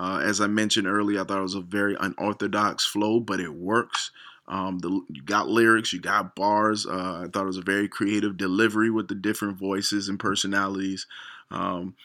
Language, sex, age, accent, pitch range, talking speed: English, male, 20-39, American, 95-115 Hz, 195 wpm